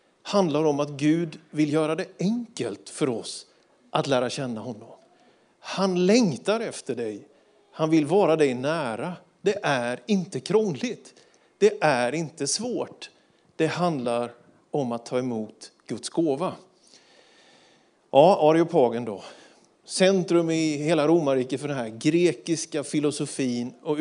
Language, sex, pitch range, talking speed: Swedish, male, 135-190 Hz, 130 wpm